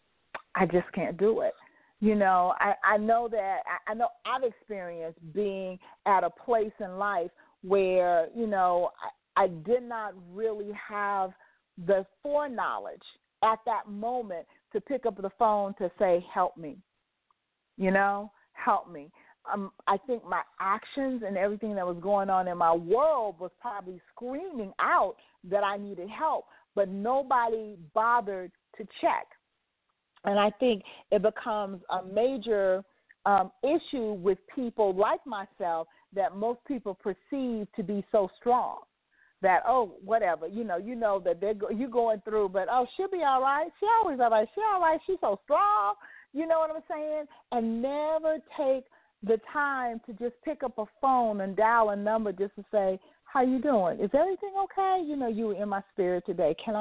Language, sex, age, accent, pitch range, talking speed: English, female, 40-59, American, 195-255 Hz, 175 wpm